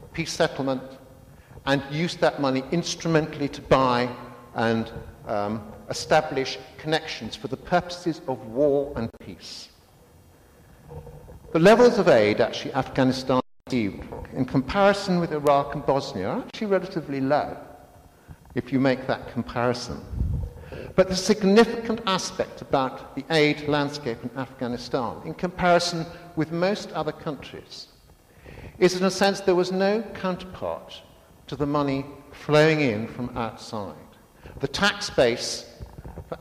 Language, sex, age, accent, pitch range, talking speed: Swedish, male, 60-79, British, 125-175 Hz, 125 wpm